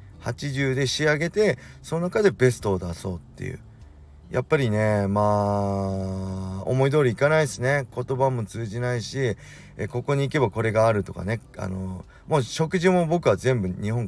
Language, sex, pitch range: Japanese, male, 100-145 Hz